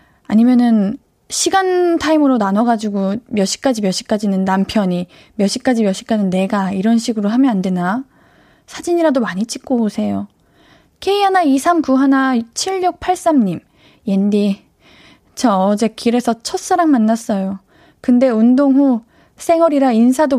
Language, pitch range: Korean, 205-295 Hz